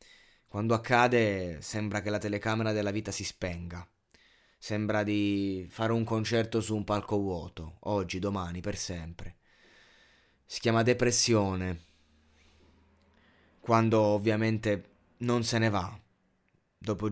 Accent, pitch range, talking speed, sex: native, 90-110 Hz, 115 wpm, male